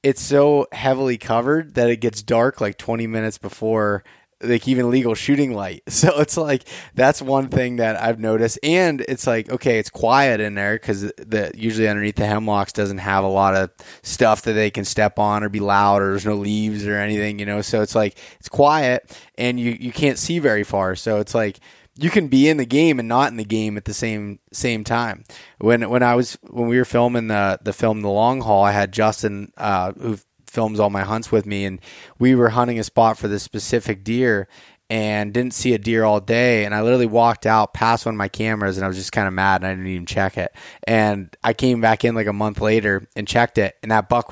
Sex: male